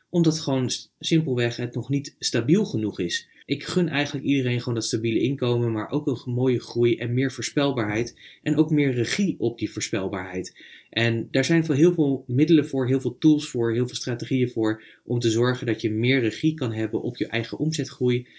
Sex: male